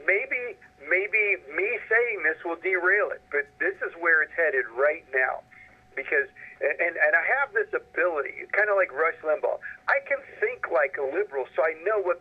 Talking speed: 185 wpm